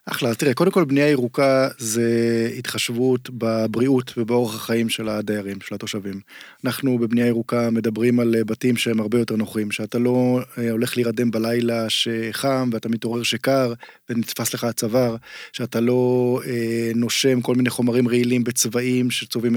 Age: 20-39